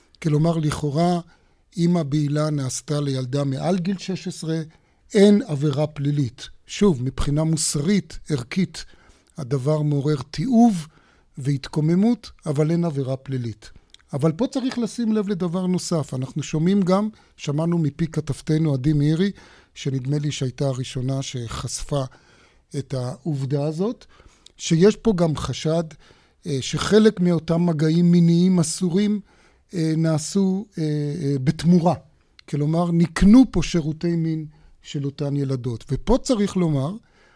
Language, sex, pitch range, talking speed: Hebrew, male, 145-185 Hz, 110 wpm